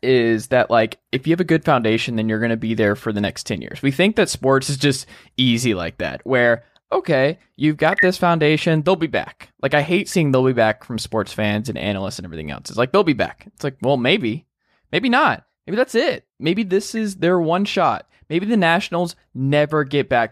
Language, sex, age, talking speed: English, male, 20-39, 235 wpm